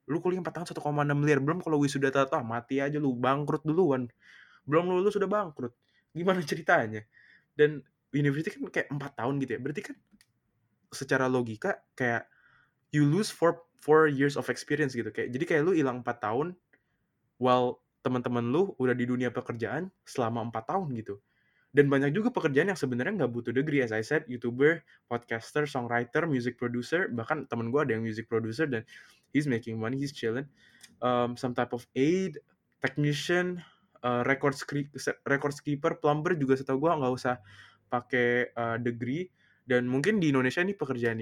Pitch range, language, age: 120-150 Hz, Indonesian, 20-39